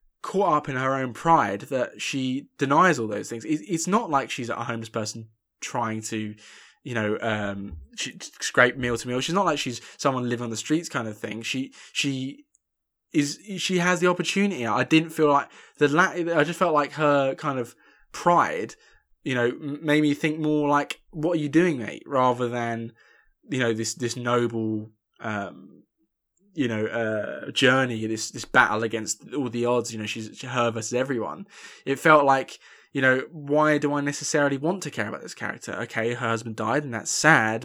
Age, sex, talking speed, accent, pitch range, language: 20-39, male, 195 wpm, British, 115-150 Hz, English